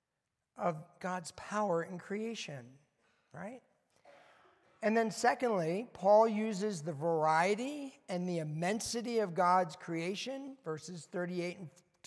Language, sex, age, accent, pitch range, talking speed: English, male, 50-69, American, 170-220 Hz, 105 wpm